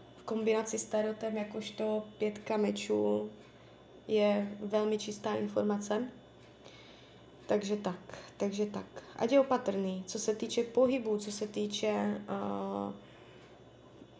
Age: 20-39